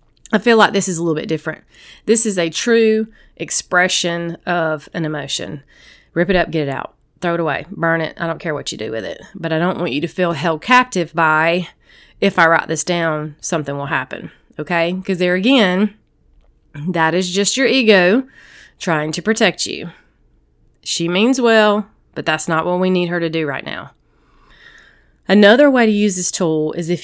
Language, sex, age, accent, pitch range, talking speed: English, female, 30-49, American, 160-210 Hz, 200 wpm